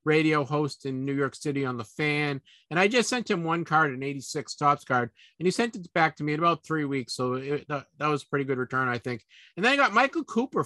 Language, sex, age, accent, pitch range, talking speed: English, male, 50-69, American, 140-175 Hz, 270 wpm